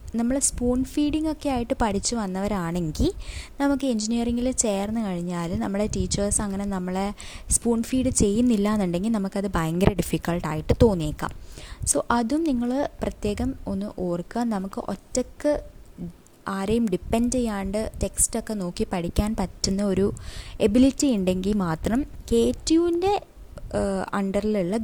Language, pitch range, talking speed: Malayalam, 190-250 Hz, 110 wpm